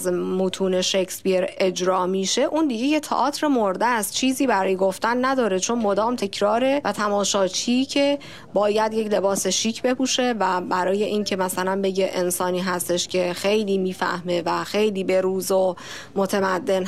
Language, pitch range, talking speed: Persian, 185-225 Hz, 155 wpm